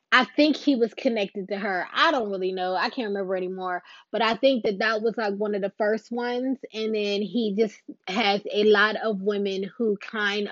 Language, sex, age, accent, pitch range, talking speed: English, female, 20-39, American, 195-245 Hz, 215 wpm